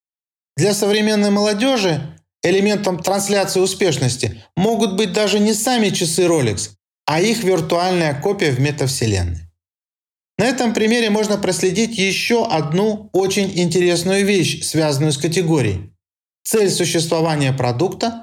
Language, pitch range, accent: Russian, 150-205 Hz, native